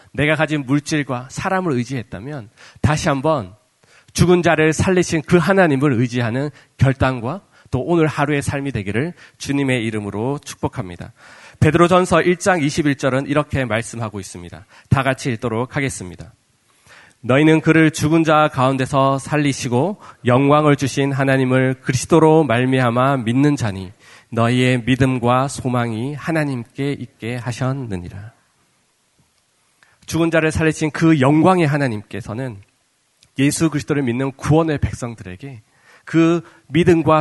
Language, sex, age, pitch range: Korean, male, 40-59, 115-150 Hz